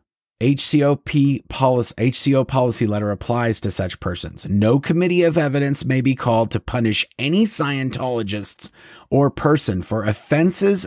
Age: 30-49